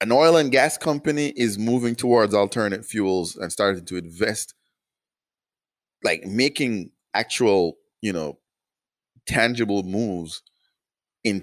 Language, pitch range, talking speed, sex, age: English, 80-100 Hz, 115 wpm, male, 30-49